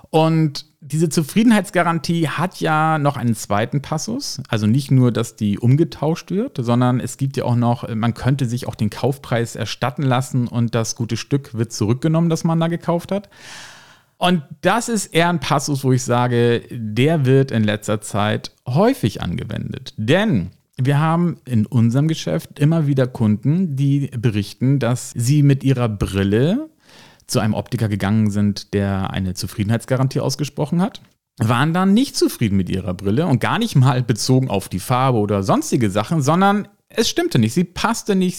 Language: German